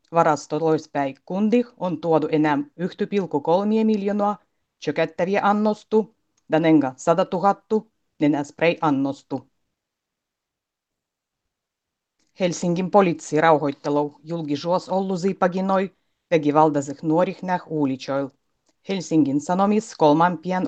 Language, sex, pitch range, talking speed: Finnish, female, 150-190 Hz, 75 wpm